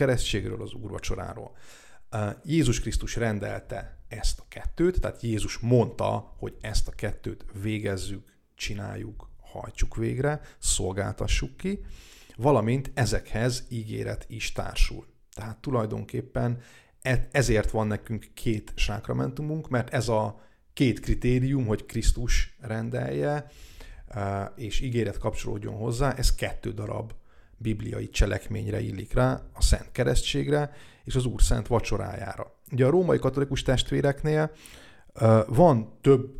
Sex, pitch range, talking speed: male, 105-125 Hz, 115 wpm